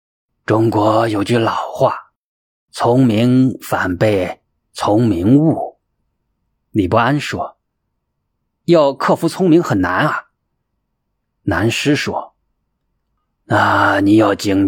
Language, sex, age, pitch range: Chinese, male, 20-39, 105-140 Hz